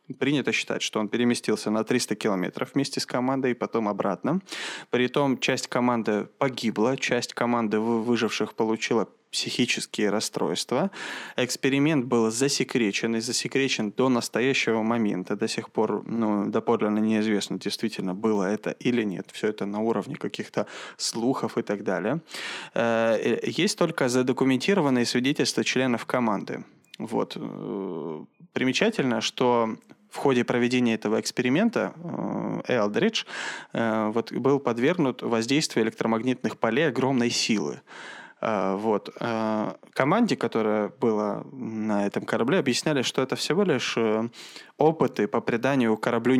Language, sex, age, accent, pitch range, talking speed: Russian, male, 20-39, native, 105-125 Hz, 115 wpm